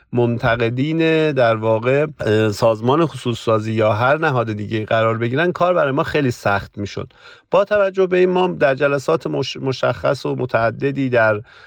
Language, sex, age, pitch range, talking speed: Persian, male, 50-69, 115-140 Hz, 155 wpm